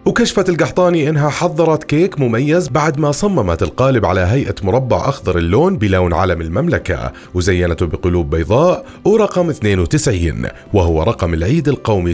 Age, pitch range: 30-49, 95-155 Hz